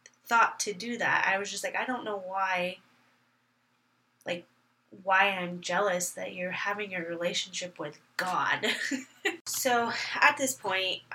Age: 20-39